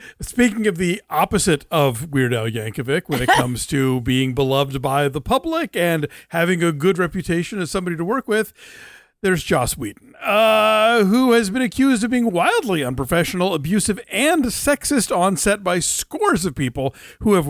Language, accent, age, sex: English, American, 50-69, male